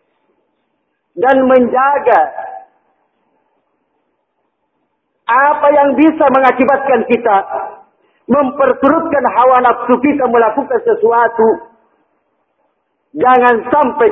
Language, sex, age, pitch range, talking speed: Malay, male, 50-69, 210-290 Hz, 65 wpm